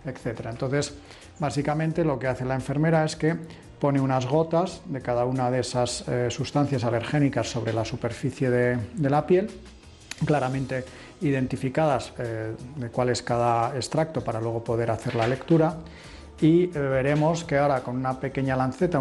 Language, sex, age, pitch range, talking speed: Spanish, male, 40-59, 125-150 Hz, 160 wpm